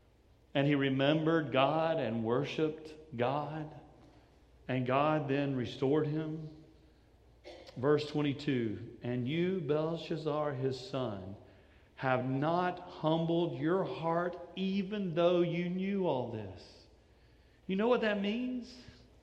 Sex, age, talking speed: male, 40-59, 110 wpm